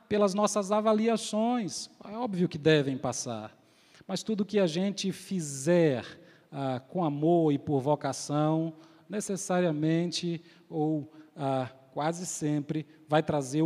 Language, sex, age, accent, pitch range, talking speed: Portuguese, male, 40-59, Brazilian, 165-230 Hz, 120 wpm